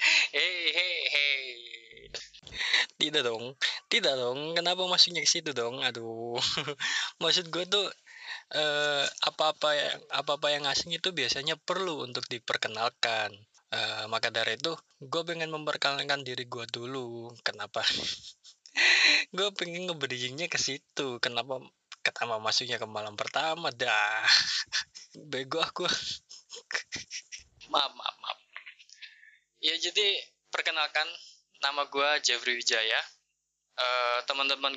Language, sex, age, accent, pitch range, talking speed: Indonesian, male, 20-39, native, 120-165 Hz, 115 wpm